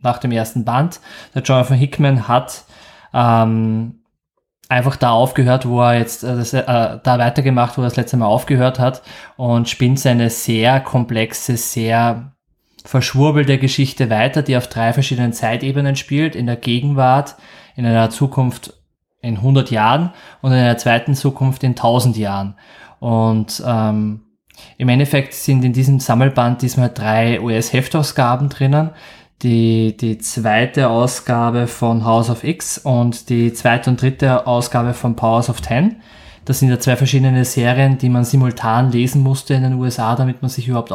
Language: German